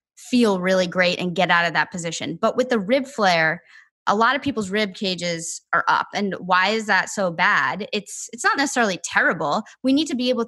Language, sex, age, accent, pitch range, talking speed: English, female, 20-39, American, 180-225 Hz, 220 wpm